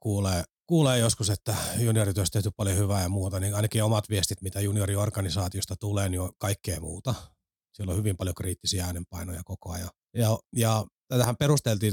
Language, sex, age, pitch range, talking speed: Finnish, male, 30-49, 95-115 Hz, 160 wpm